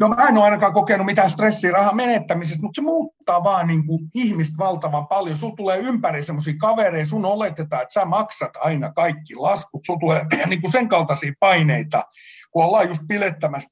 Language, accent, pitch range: Finnish, native, 150-200 Hz